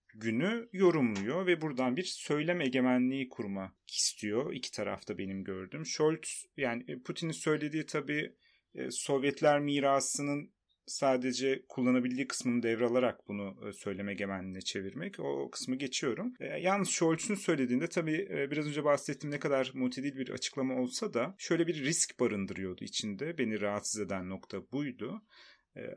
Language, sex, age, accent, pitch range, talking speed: Turkish, male, 30-49, native, 125-170 Hz, 130 wpm